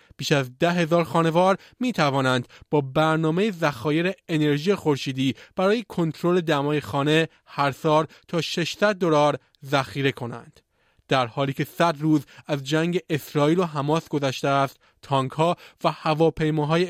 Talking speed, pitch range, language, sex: 140 wpm, 140-170 Hz, Persian, male